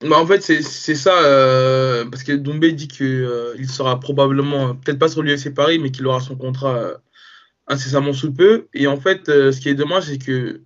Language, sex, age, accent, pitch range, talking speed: French, male, 20-39, French, 130-155 Hz, 230 wpm